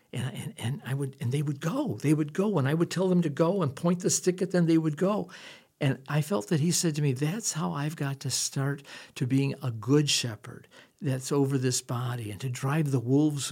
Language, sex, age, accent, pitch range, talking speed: English, male, 60-79, American, 120-150 Hz, 250 wpm